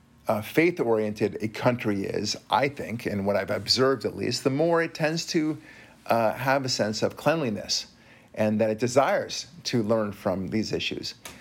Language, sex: English, male